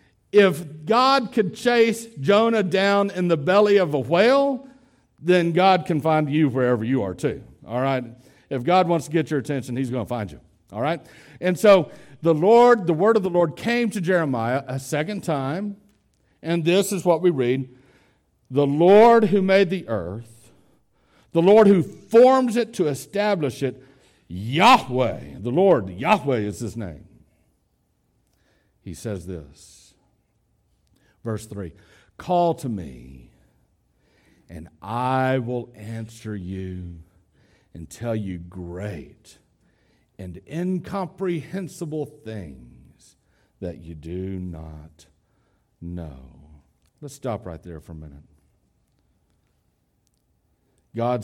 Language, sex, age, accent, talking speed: English, male, 60-79, American, 130 wpm